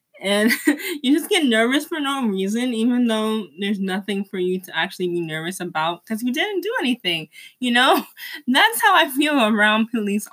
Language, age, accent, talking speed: English, 20-39, American, 185 wpm